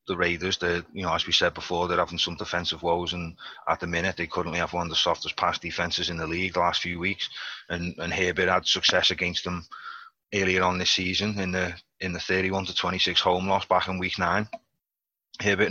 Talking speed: 225 wpm